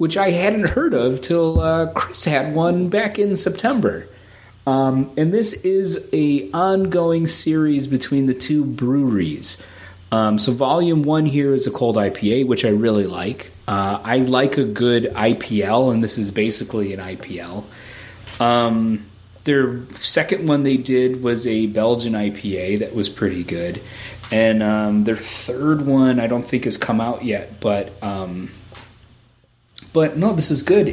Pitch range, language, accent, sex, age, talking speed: 100-130 Hz, English, American, male, 30-49, 160 wpm